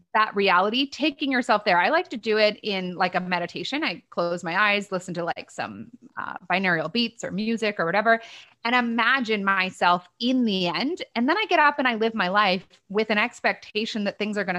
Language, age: English, 30-49